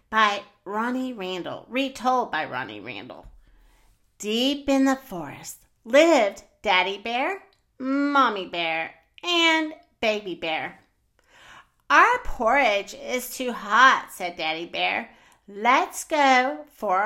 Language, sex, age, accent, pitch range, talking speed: English, female, 40-59, American, 185-285 Hz, 100 wpm